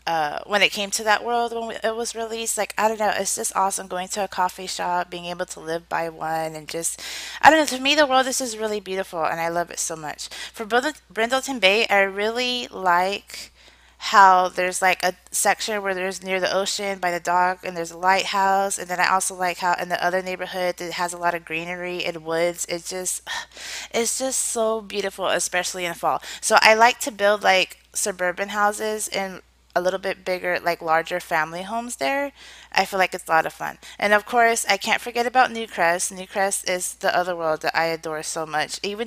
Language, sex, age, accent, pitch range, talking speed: English, female, 20-39, American, 175-215 Hz, 220 wpm